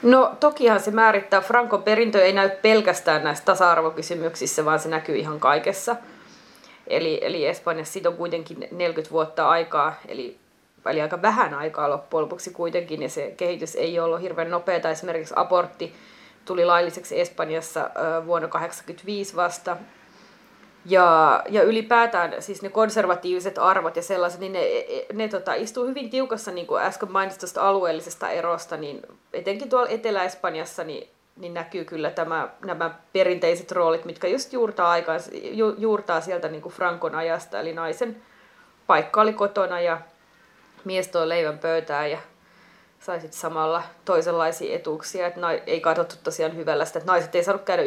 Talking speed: 150 wpm